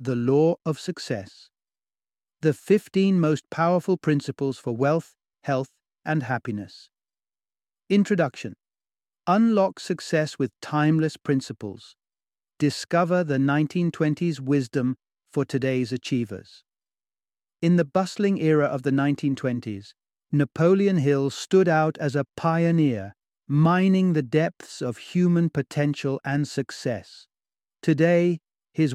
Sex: male